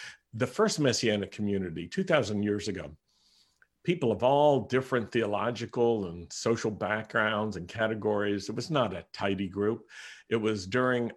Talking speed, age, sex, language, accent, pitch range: 140 wpm, 60-79, male, English, American, 105-125 Hz